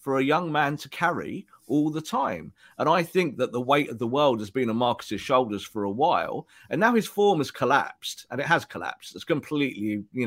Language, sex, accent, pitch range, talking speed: English, male, British, 115-150 Hz, 230 wpm